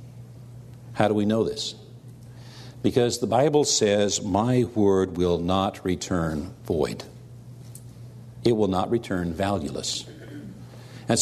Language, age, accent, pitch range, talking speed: English, 60-79, American, 105-125 Hz, 110 wpm